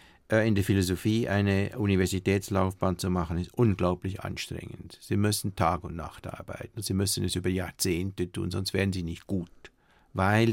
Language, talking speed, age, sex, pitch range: German, 160 wpm, 50-69, male, 95-110 Hz